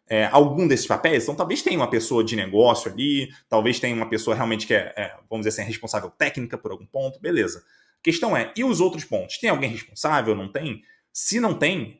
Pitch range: 120-165 Hz